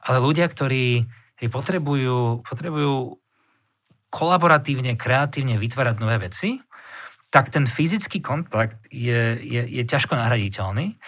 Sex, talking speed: male, 105 wpm